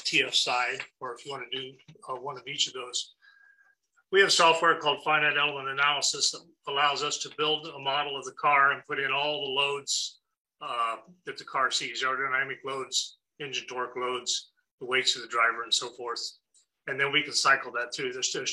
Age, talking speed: 40-59, 205 wpm